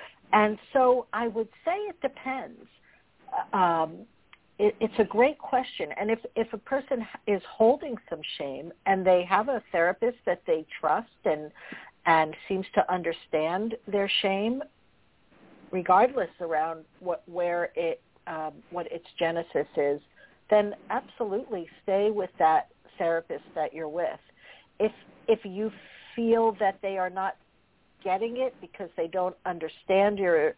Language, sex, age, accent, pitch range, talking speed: English, female, 60-79, American, 170-225 Hz, 140 wpm